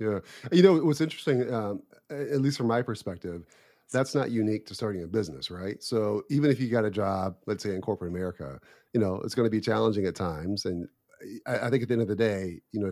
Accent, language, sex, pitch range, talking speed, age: American, English, male, 90-115 Hz, 240 wpm, 30-49